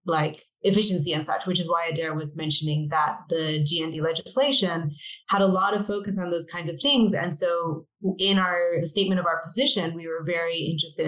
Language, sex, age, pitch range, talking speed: English, female, 20-39, 160-190 Hz, 195 wpm